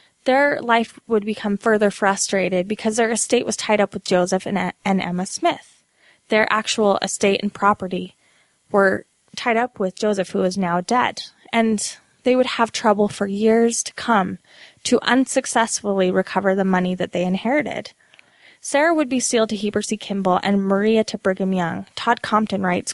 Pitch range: 190-230 Hz